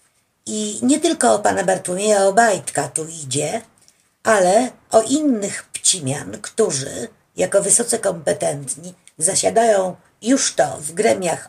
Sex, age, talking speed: female, 50-69, 115 wpm